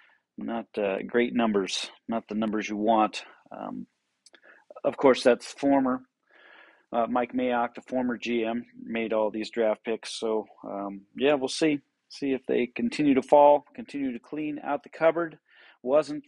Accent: American